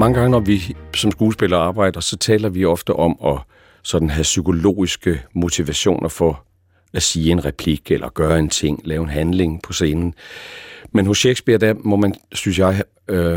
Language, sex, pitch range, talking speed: Danish, male, 85-100 Hz, 175 wpm